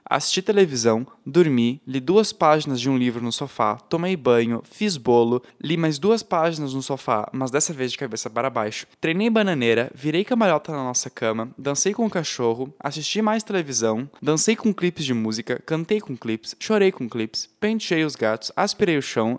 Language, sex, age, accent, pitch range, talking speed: Portuguese, male, 10-29, Brazilian, 125-165 Hz, 185 wpm